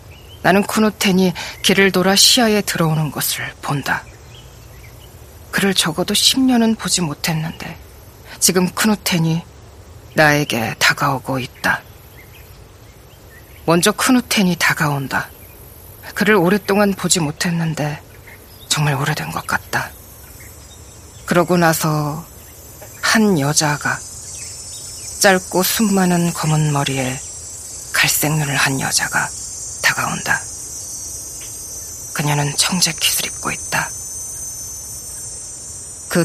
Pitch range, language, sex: 105-170 Hz, Korean, female